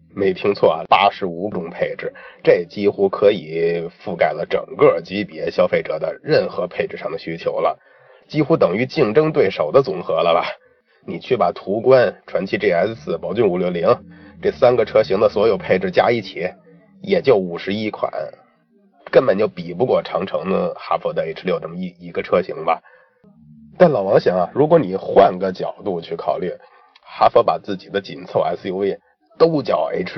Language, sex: Chinese, male